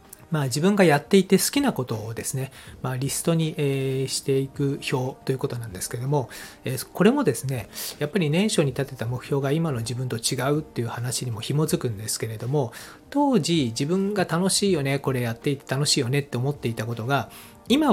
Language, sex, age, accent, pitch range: Japanese, male, 40-59, native, 120-160 Hz